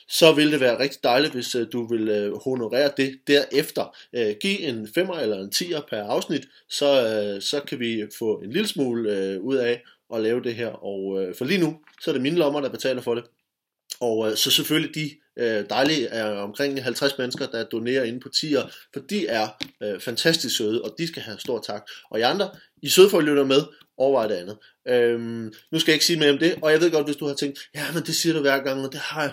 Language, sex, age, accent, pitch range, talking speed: Danish, male, 20-39, native, 130-175 Hz, 225 wpm